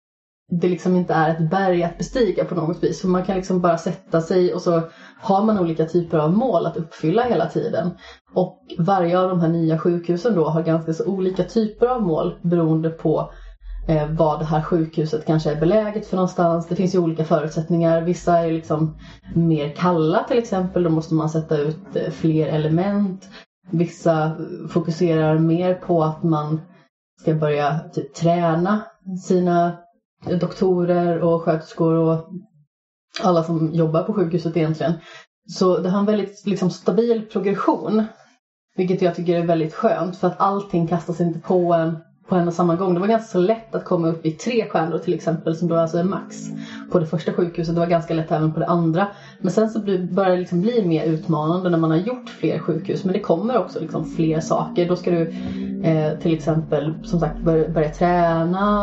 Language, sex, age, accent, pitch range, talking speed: Swedish, female, 30-49, native, 160-185 Hz, 190 wpm